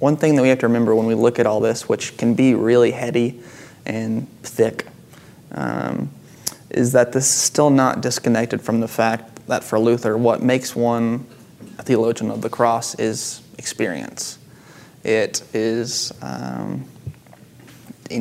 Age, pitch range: 20-39, 115-130 Hz